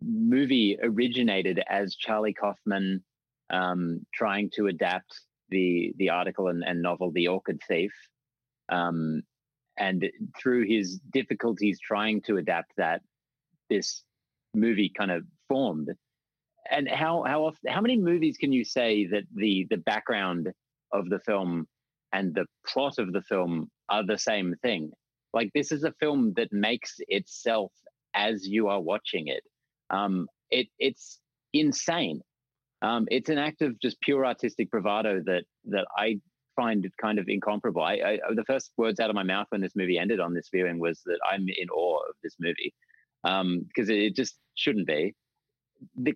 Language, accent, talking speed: English, Australian, 160 wpm